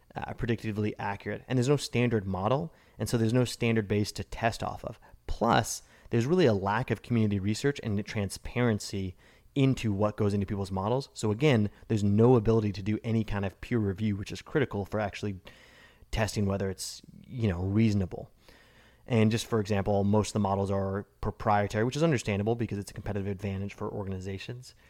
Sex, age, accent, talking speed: male, 20-39, American, 190 wpm